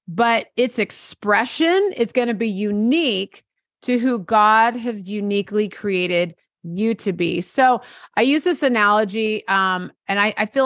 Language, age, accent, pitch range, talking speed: English, 30-49, American, 190-240 Hz, 150 wpm